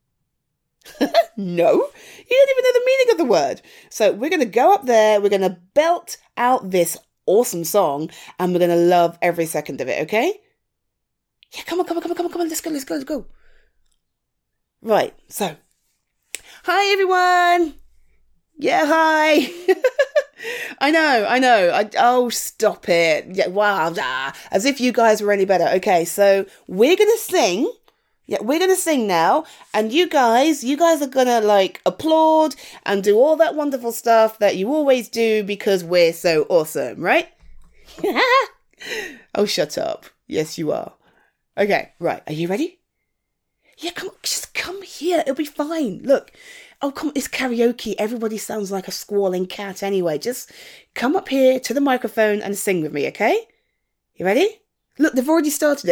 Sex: female